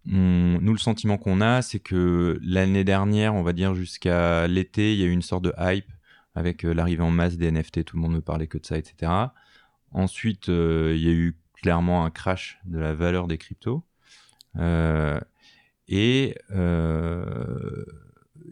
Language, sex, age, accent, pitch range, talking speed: French, male, 30-49, French, 80-100 Hz, 180 wpm